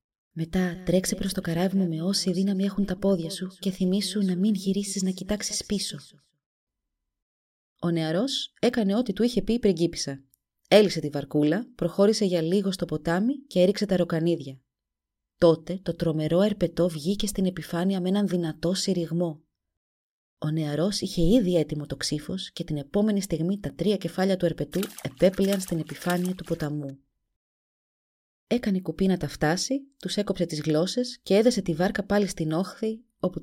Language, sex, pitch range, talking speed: Greek, female, 160-200 Hz, 160 wpm